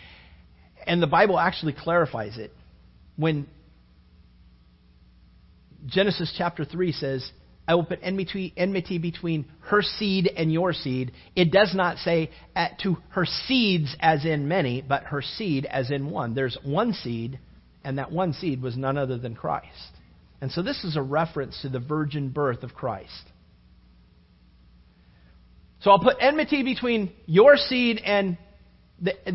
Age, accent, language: 40-59, American, English